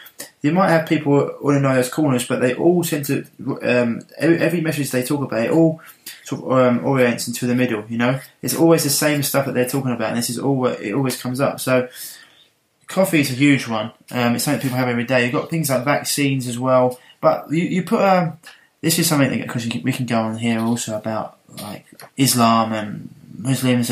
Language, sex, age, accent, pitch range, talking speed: English, male, 20-39, British, 120-140 Hz, 225 wpm